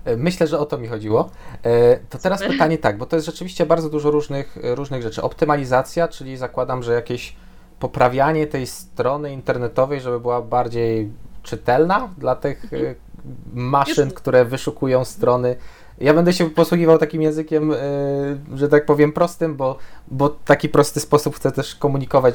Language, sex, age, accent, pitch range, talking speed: Polish, male, 20-39, native, 115-150 Hz, 150 wpm